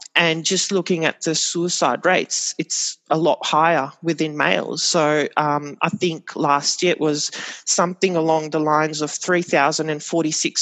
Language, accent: English, Australian